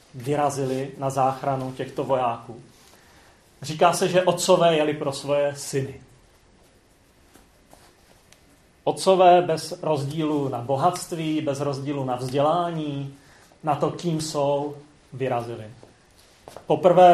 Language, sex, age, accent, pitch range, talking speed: Czech, male, 30-49, native, 130-150 Hz, 100 wpm